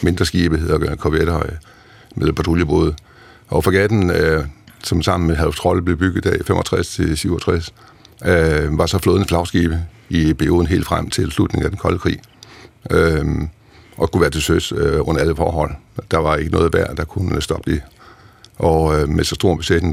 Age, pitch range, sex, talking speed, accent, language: 60-79, 80-100 Hz, male, 160 wpm, native, Danish